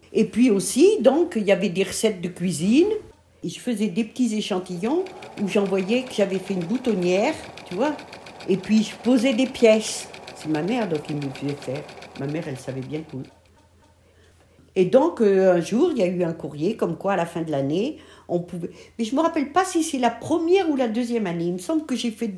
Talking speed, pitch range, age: 230 wpm, 150-225 Hz, 60-79